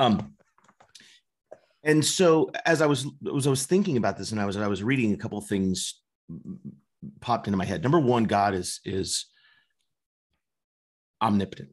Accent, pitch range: American, 95-135 Hz